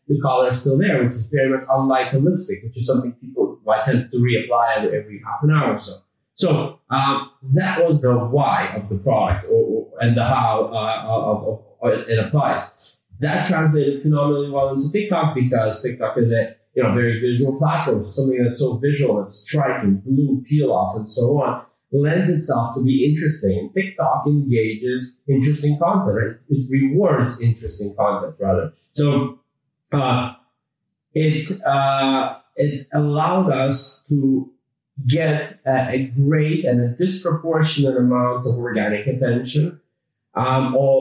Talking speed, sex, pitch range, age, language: 160 wpm, male, 120-145 Hz, 30-49, English